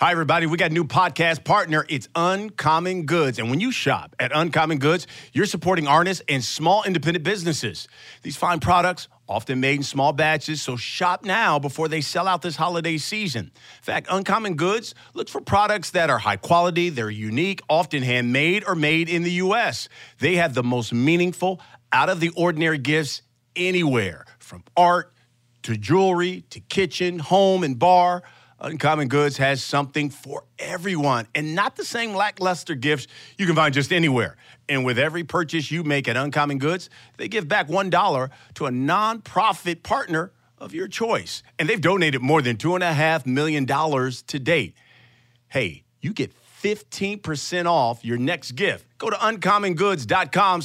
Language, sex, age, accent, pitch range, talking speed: English, male, 50-69, American, 135-180 Hz, 160 wpm